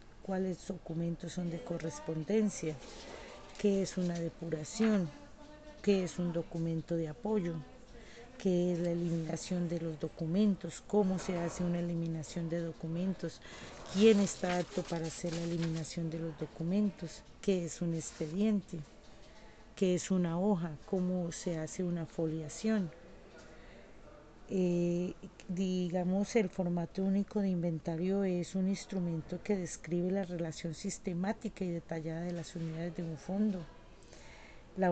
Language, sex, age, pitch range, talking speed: Spanish, female, 40-59, 165-190 Hz, 130 wpm